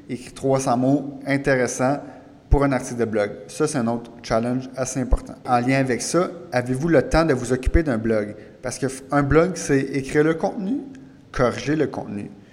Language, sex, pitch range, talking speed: French, male, 120-145 Hz, 180 wpm